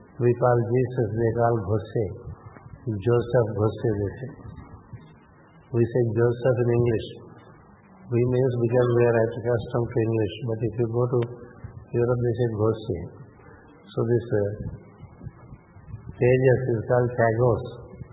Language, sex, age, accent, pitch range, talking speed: English, male, 50-69, Indian, 115-130 Hz, 125 wpm